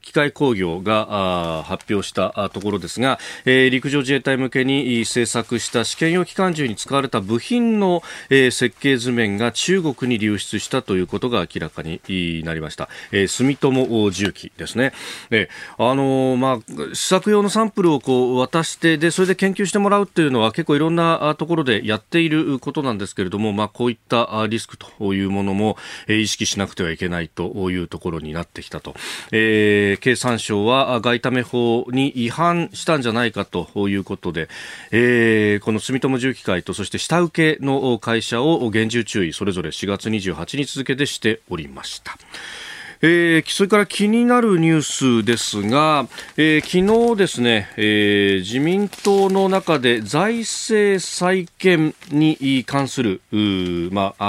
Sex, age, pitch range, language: male, 40-59, 105-160 Hz, Japanese